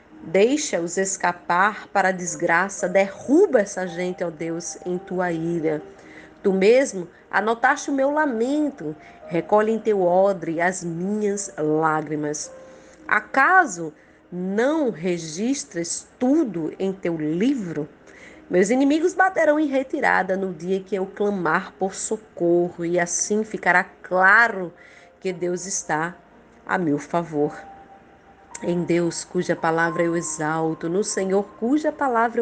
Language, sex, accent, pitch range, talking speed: Portuguese, female, Brazilian, 175-230 Hz, 120 wpm